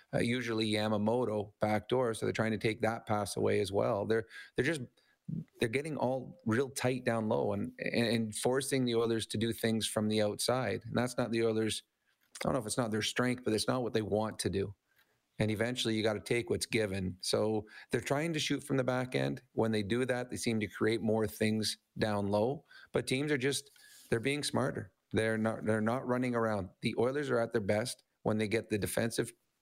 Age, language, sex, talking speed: 30-49, English, male, 220 wpm